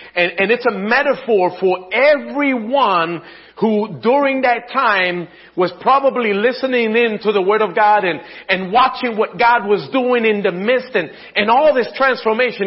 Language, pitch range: English, 190-265 Hz